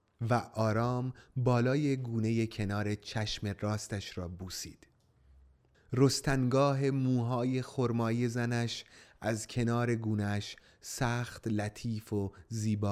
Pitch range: 100-120 Hz